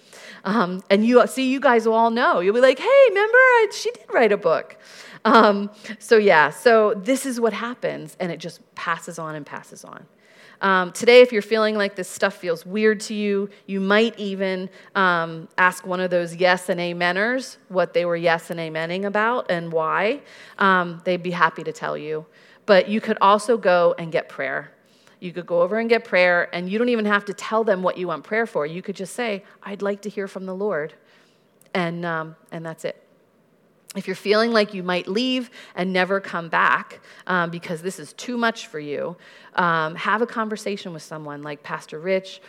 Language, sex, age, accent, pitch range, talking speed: English, female, 40-59, American, 170-210 Hz, 205 wpm